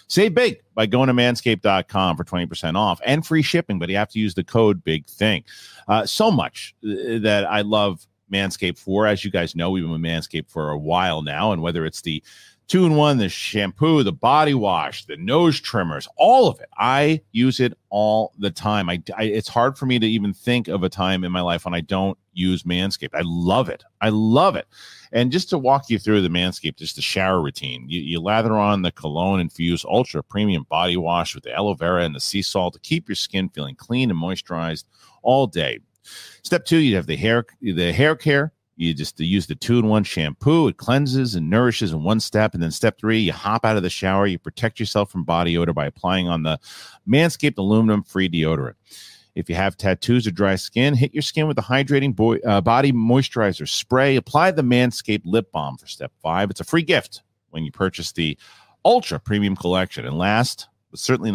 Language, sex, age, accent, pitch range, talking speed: English, male, 40-59, American, 85-120 Hz, 210 wpm